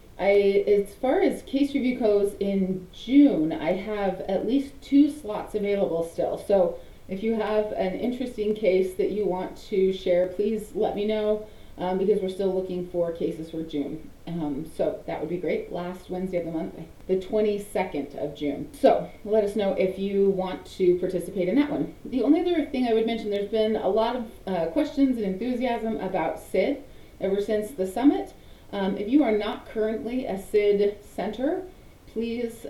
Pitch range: 175-215 Hz